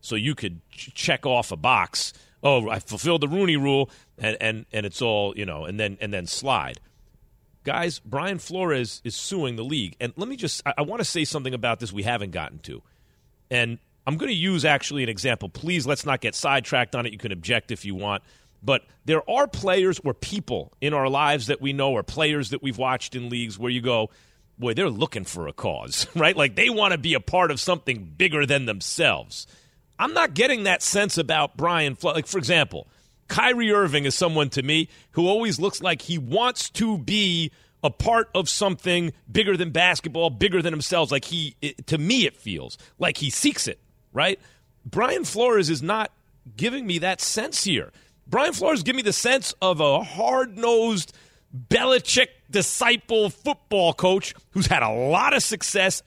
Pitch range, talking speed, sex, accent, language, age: 125-185 Hz, 200 wpm, male, American, English, 40-59